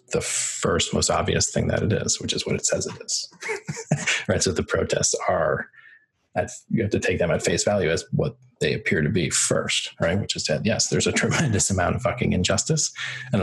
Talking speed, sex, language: 215 wpm, male, English